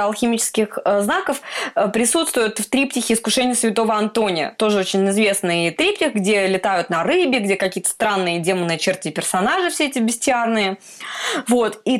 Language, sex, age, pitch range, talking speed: Russian, female, 20-39, 205-255 Hz, 140 wpm